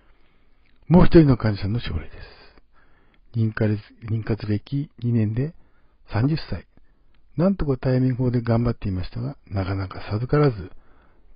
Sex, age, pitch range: male, 60-79, 100-145 Hz